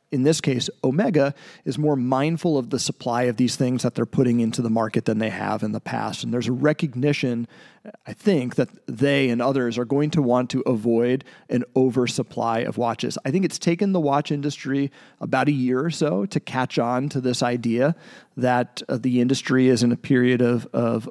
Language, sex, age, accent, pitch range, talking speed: English, male, 40-59, American, 125-150 Hz, 205 wpm